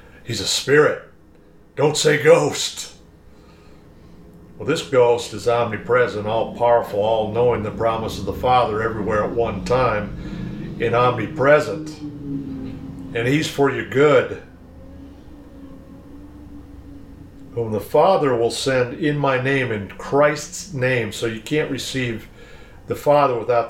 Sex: male